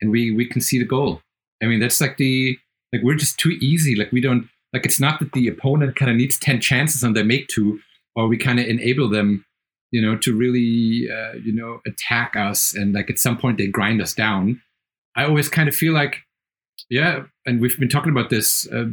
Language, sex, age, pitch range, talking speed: English, male, 30-49, 115-140 Hz, 230 wpm